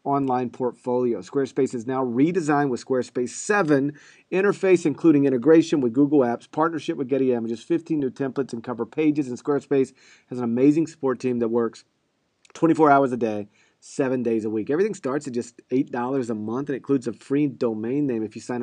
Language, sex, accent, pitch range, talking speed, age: English, male, American, 120-145 Hz, 185 wpm, 40-59